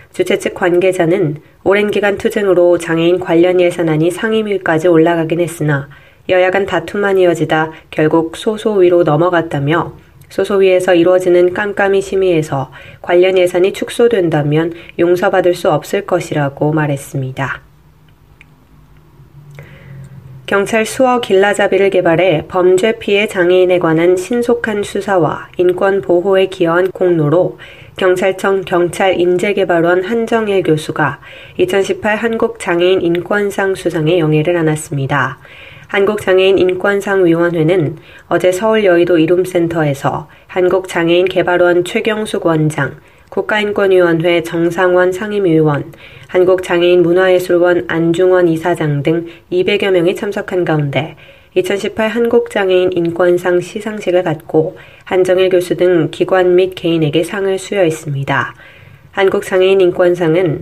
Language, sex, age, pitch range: Korean, female, 20-39, 165-190 Hz